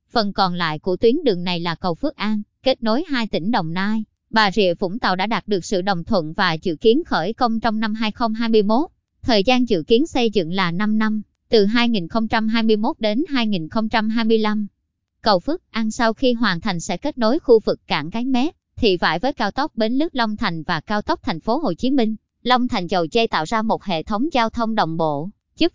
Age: 20-39